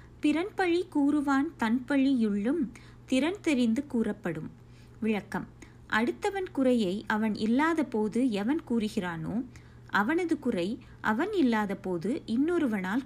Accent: native